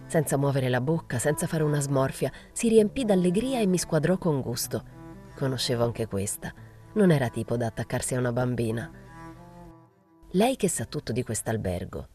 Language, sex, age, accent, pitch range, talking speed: Italian, female, 30-49, native, 110-165 Hz, 165 wpm